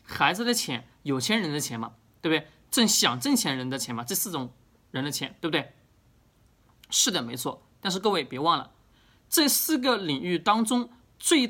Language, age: Chinese, 20-39